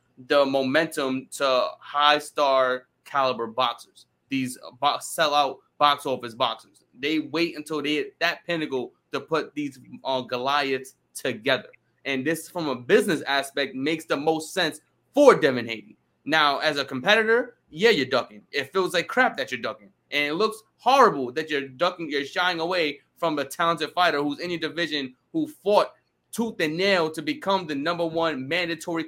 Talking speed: 165 wpm